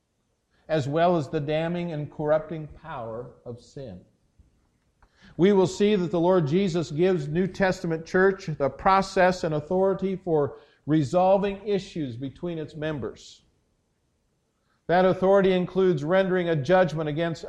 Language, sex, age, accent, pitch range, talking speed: English, male, 50-69, American, 125-175 Hz, 130 wpm